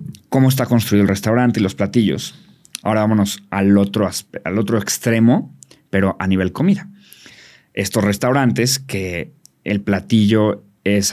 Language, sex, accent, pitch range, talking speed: Spanish, male, Mexican, 100-125 Hz, 140 wpm